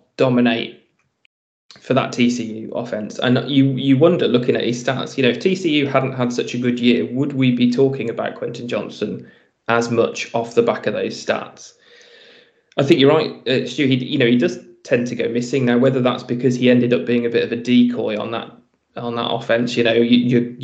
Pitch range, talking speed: 120-125 Hz, 210 wpm